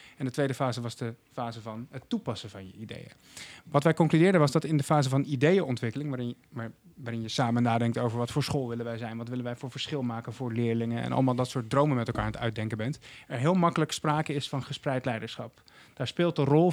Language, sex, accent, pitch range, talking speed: Dutch, male, Dutch, 120-150 Hz, 235 wpm